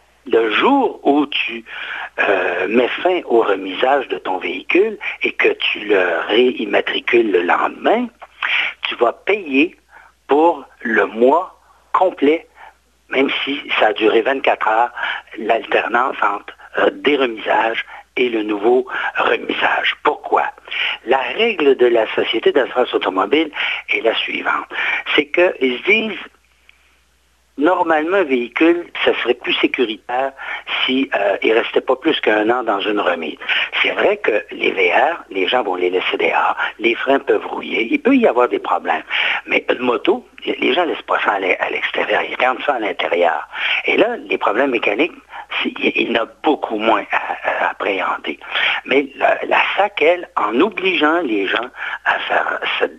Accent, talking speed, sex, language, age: French, 155 wpm, male, French, 60-79